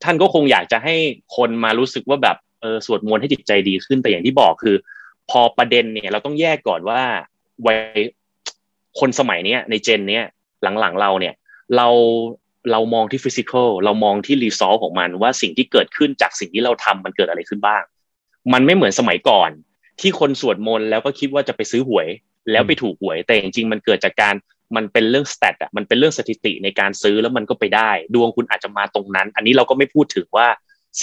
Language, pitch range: Thai, 105-140 Hz